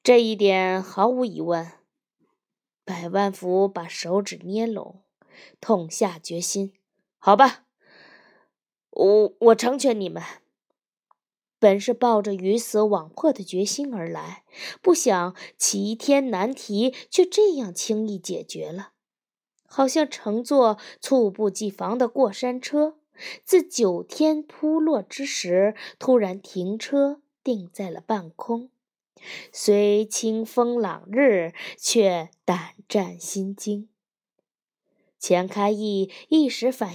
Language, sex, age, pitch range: Chinese, female, 20-39, 195-260 Hz